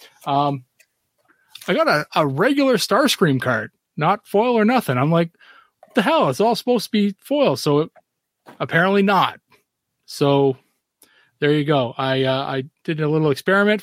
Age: 30-49